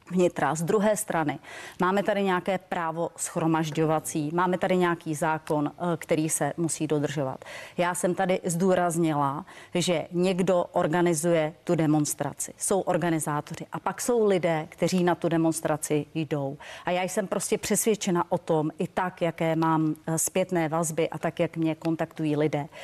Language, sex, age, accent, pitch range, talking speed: Czech, female, 30-49, native, 155-185 Hz, 145 wpm